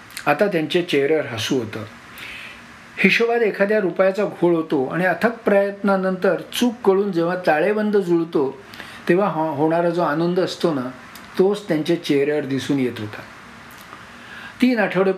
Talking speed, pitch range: 125 wpm, 155-190 Hz